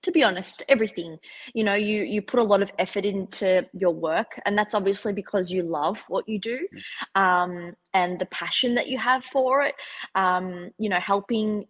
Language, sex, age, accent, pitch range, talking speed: English, female, 20-39, Australian, 175-215 Hz, 195 wpm